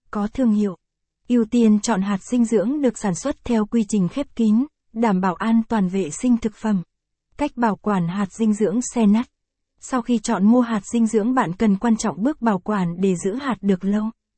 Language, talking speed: Vietnamese, 215 wpm